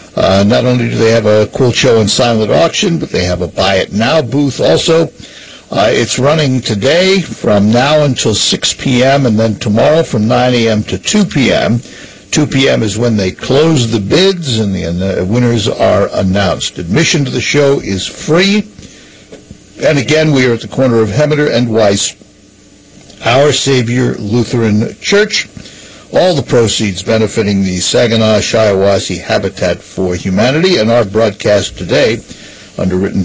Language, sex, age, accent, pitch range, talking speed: English, male, 60-79, American, 105-145 Hz, 160 wpm